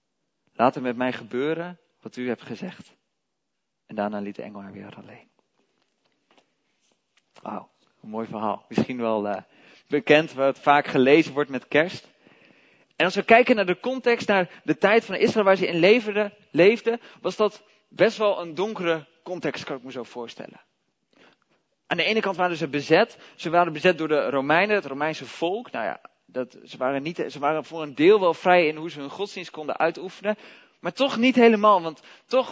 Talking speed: 185 wpm